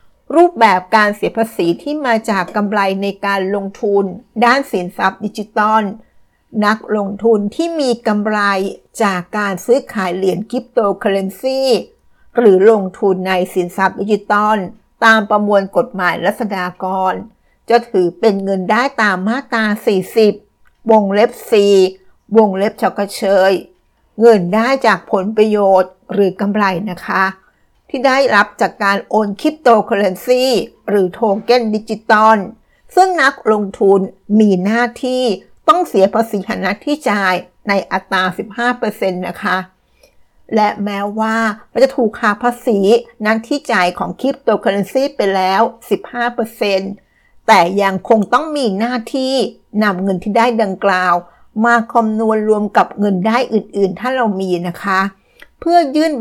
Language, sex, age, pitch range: Thai, female, 60-79, 195-235 Hz